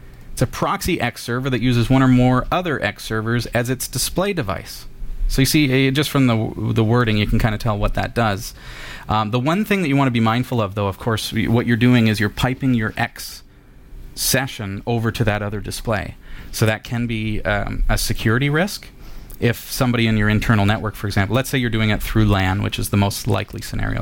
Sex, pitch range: male, 100-120 Hz